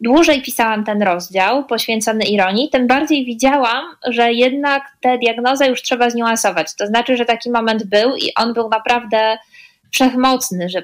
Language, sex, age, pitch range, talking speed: Polish, female, 20-39, 220-255 Hz, 155 wpm